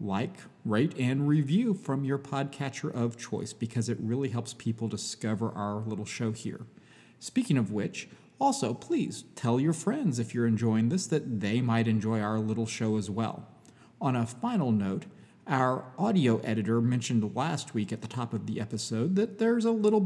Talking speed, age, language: 180 wpm, 40-59, English